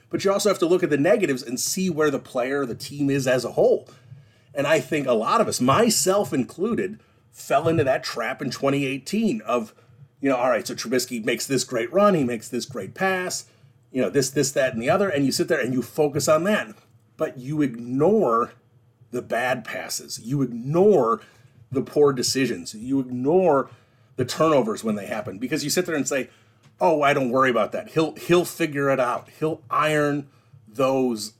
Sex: male